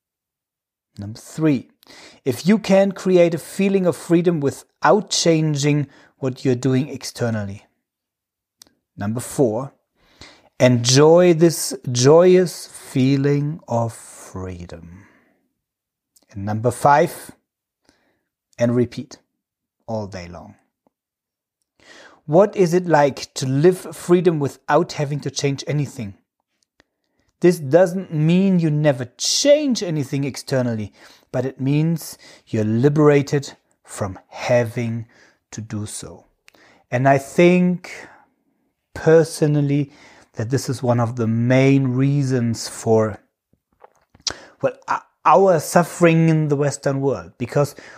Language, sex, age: English, male, 40-59